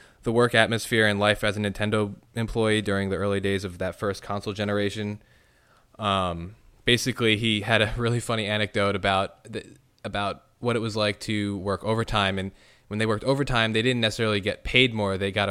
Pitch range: 95-115 Hz